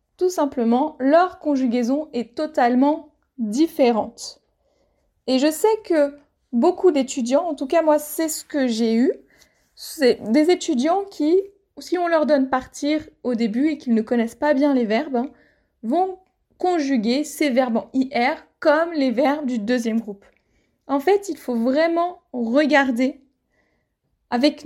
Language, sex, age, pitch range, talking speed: French, female, 20-39, 245-305 Hz, 150 wpm